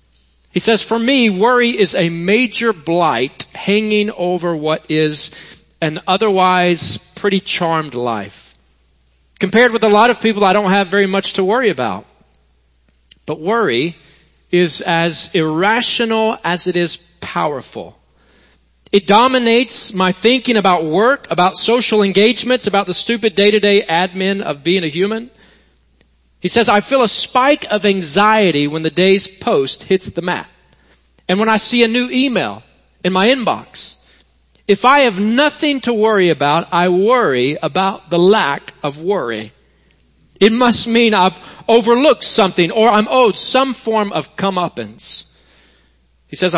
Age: 40-59